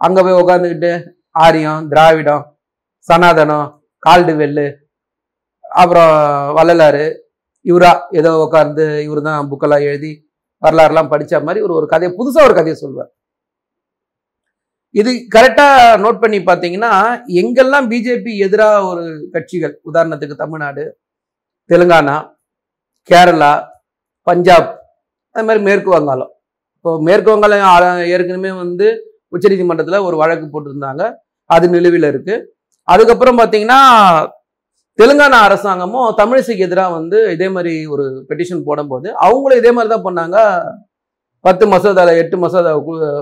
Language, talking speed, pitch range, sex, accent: Tamil, 110 wpm, 160-235 Hz, male, native